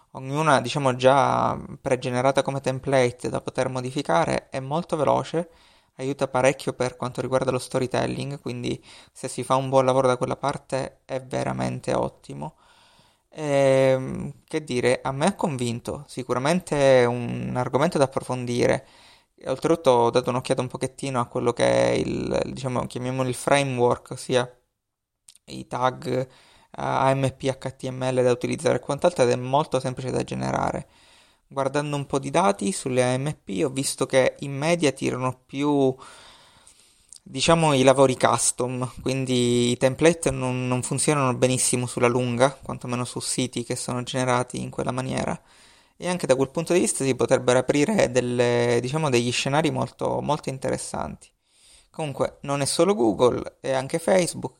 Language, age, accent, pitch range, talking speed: Italian, 20-39, native, 125-140 Hz, 150 wpm